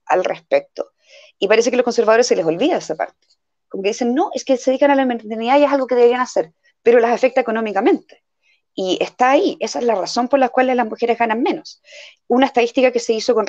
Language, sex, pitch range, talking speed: Spanish, female, 200-260 Hz, 235 wpm